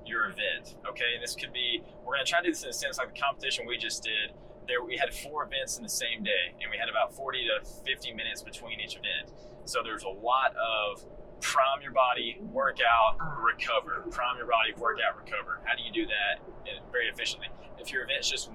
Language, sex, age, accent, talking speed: English, male, 20-39, American, 220 wpm